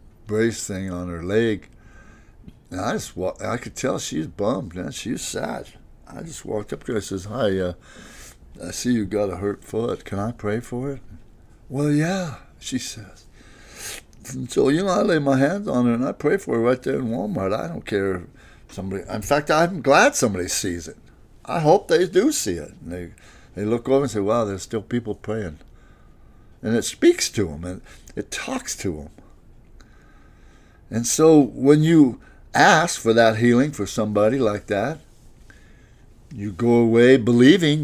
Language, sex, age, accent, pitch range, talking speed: English, male, 60-79, American, 100-130 Hz, 190 wpm